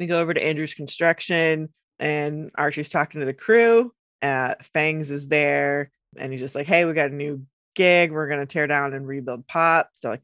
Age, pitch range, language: 20-39, 140-170 Hz, English